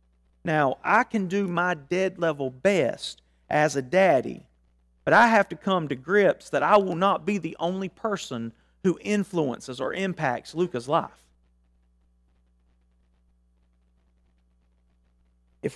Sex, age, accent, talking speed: male, 40-59, American, 125 wpm